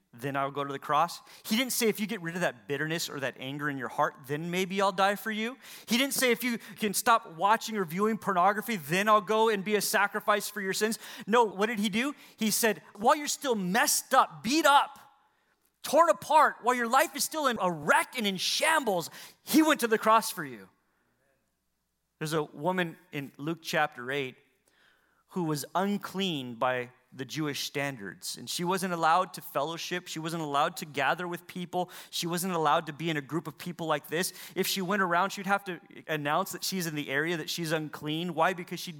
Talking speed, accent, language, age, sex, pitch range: 215 wpm, American, English, 30-49, male, 150-210 Hz